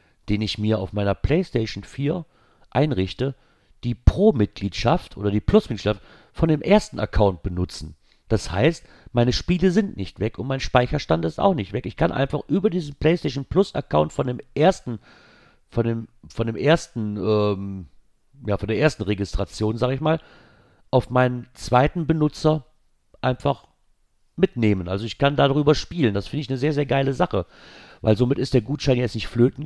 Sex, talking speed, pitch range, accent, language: male, 170 wpm, 95-135 Hz, German, German